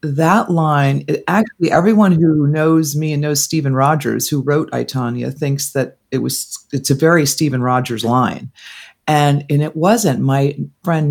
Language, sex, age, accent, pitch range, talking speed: English, female, 40-59, American, 130-160 Hz, 165 wpm